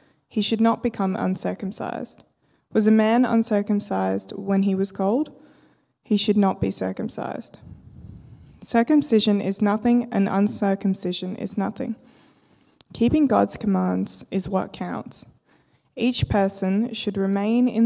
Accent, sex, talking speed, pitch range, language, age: Australian, female, 120 wpm, 190-230 Hz, English, 20-39